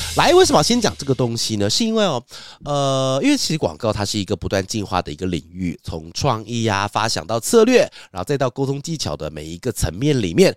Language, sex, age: Chinese, male, 30-49